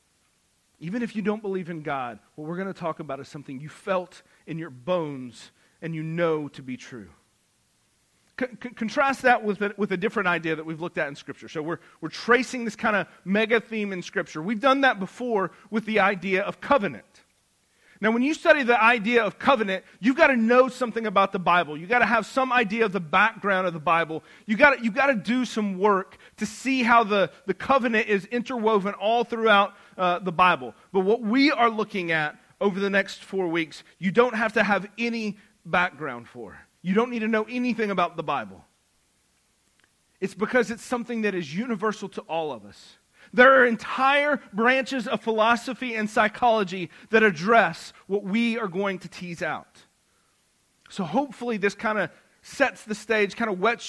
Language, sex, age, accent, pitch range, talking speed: English, male, 40-59, American, 170-230 Hz, 195 wpm